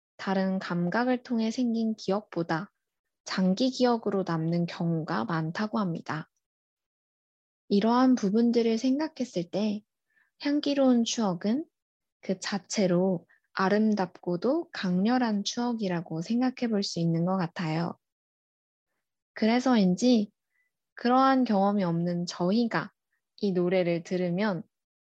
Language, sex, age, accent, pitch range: Korean, female, 20-39, native, 180-235 Hz